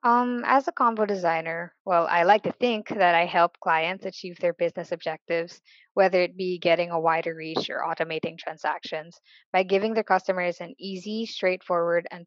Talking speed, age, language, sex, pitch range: 175 wpm, 20-39, English, female, 170-205 Hz